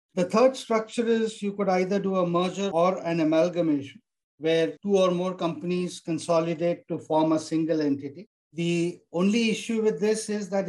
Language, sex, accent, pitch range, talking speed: English, male, Indian, 165-195 Hz, 175 wpm